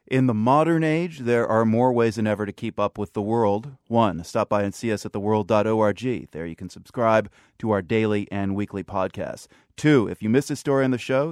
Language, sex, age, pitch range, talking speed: English, male, 30-49, 100-125 Hz, 230 wpm